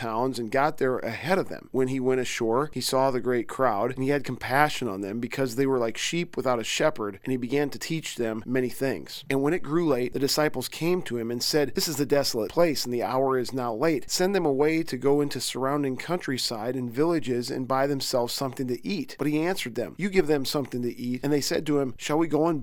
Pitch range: 125-150 Hz